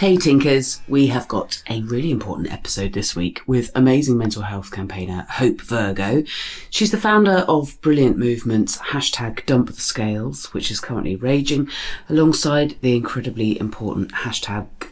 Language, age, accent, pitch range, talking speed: English, 30-49, British, 105-145 Hz, 150 wpm